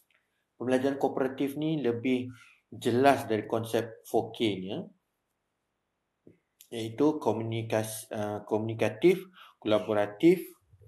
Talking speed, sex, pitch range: 65 wpm, male, 105-120 Hz